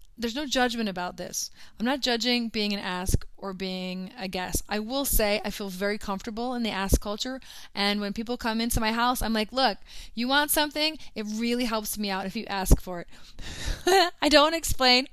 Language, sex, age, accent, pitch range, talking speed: English, female, 20-39, American, 190-255 Hz, 205 wpm